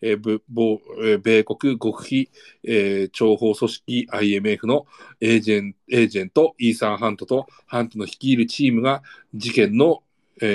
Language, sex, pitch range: Japanese, male, 110-130 Hz